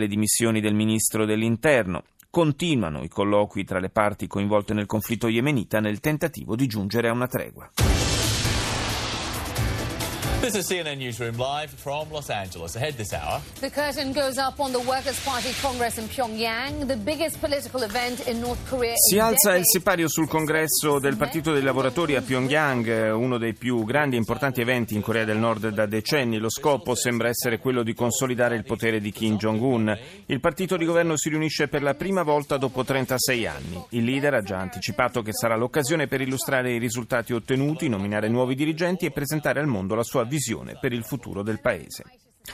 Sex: male